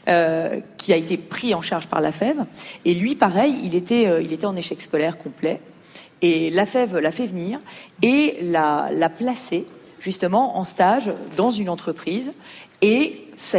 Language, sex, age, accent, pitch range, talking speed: French, female, 40-59, French, 170-230 Hz, 175 wpm